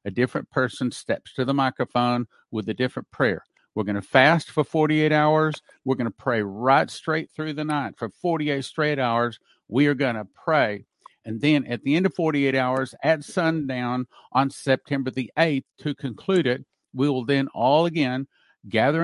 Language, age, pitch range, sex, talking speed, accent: English, 50-69, 125-150 Hz, male, 185 wpm, American